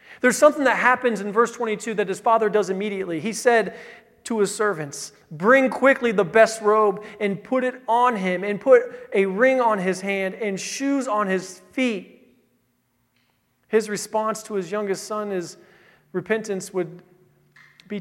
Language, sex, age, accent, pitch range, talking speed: English, male, 40-59, American, 175-210 Hz, 165 wpm